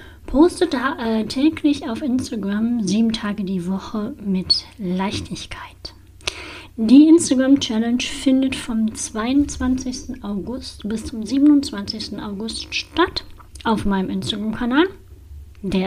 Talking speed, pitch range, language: 100 wpm, 190-260 Hz, German